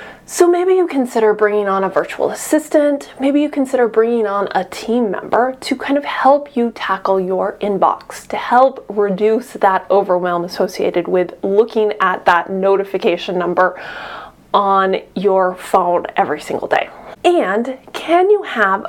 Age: 20-39